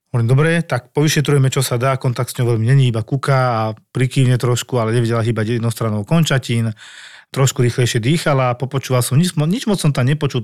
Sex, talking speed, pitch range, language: male, 190 wpm, 125-145 Hz, Slovak